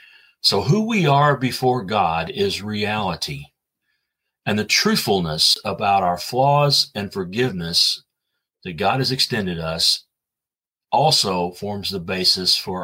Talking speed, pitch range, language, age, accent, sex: 120 wpm, 105-145 Hz, English, 40-59, American, male